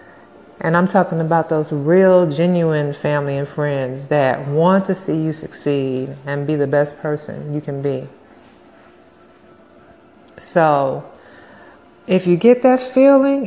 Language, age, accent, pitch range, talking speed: English, 50-69, American, 150-195 Hz, 135 wpm